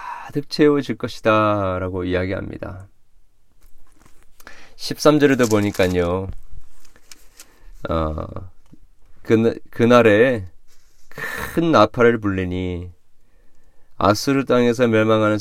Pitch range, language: 95-125 Hz, Korean